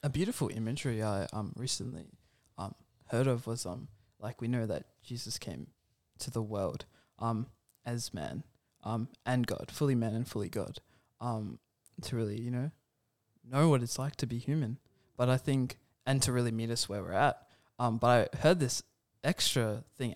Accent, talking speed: Australian, 180 wpm